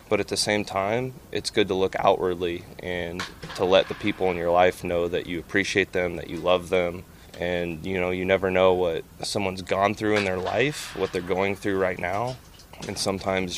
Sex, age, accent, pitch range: male, 20-39, American, 90-100 Hz